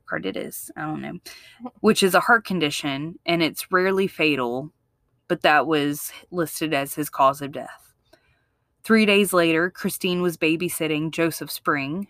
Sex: female